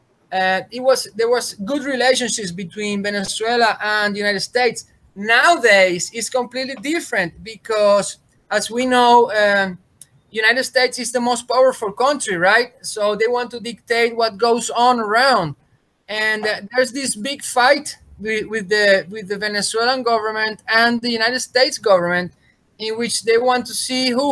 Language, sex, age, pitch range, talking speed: English, male, 20-39, 210-250 Hz, 160 wpm